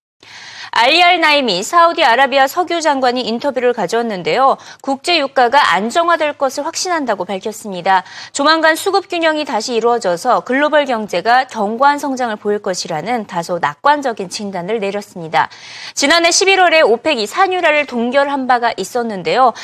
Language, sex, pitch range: Korean, female, 220-310 Hz